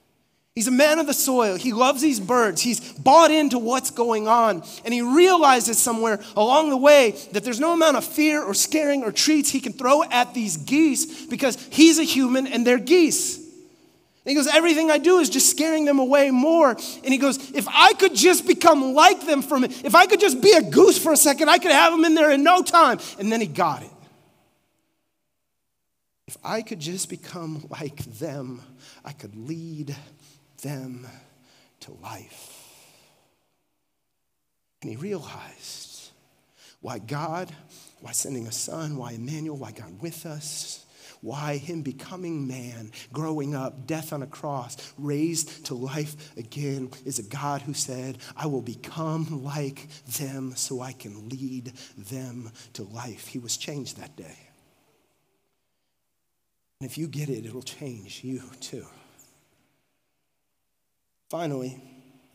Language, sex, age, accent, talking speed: English, male, 30-49, American, 160 wpm